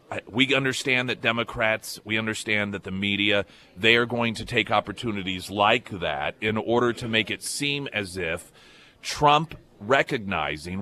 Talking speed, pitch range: 150 wpm, 100-135 Hz